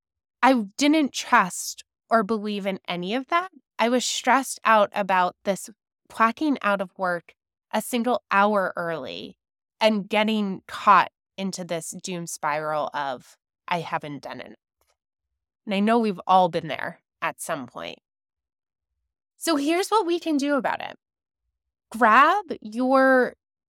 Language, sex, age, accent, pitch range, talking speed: English, female, 20-39, American, 190-265 Hz, 140 wpm